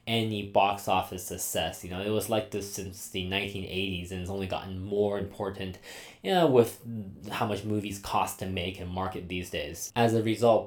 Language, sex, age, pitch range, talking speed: English, male, 20-39, 95-115 Hz, 195 wpm